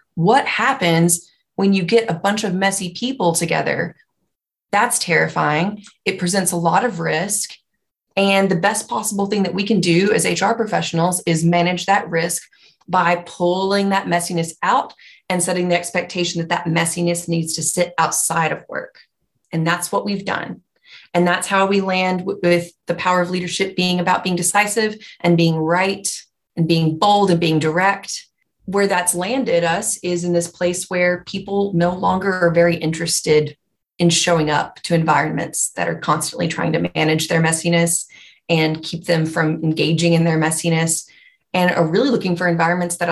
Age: 30-49